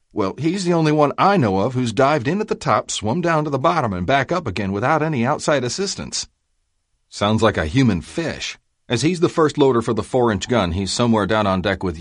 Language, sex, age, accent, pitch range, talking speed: English, male, 40-59, American, 90-125 Hz, 235 wpm